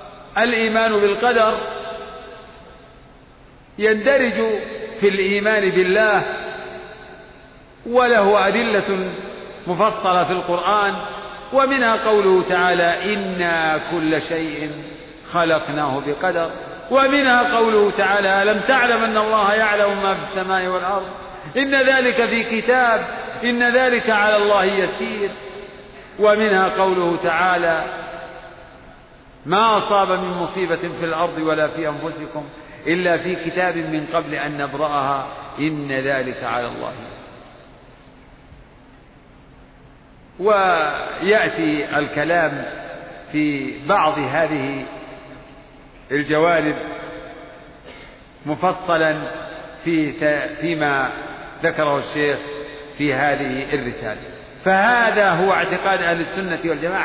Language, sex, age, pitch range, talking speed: Arabic, male, 50-69, 155-210 Hz, 85 wpm